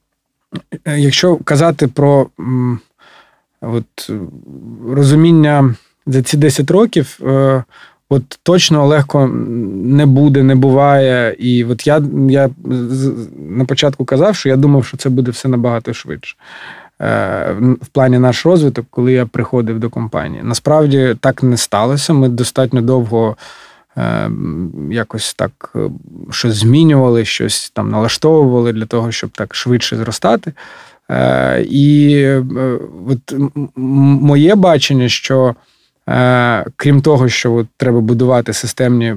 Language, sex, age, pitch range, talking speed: Ukrainian, male, 20-39, 115-140 Hz, 110 wpm